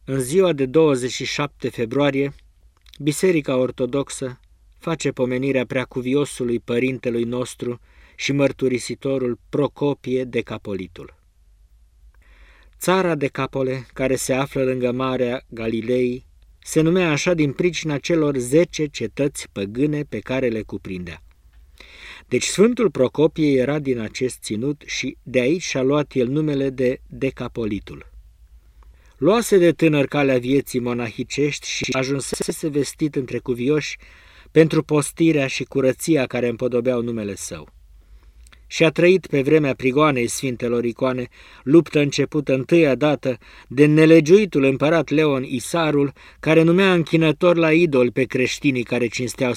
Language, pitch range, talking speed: Romanian, 120-150 Hz, 120 wpm